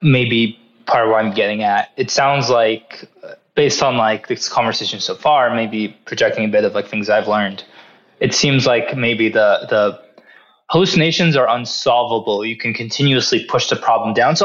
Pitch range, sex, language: 110-155 Hz, male, English